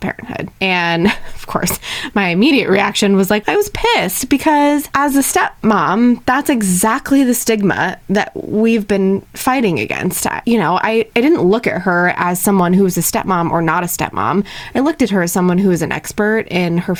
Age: 20-39